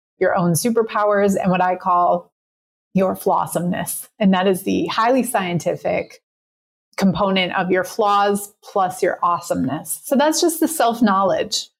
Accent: American